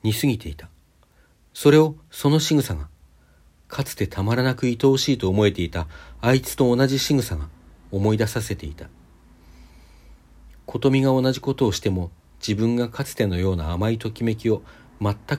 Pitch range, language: 80-120 Hz, Japanese